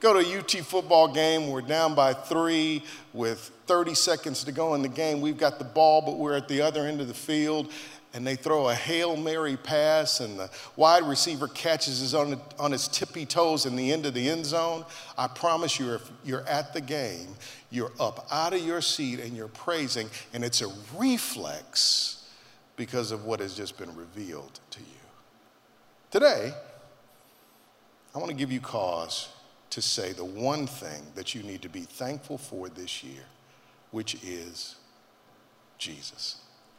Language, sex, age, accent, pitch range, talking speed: English, male, 50-69, American, 125-160 Hz, 180 wpm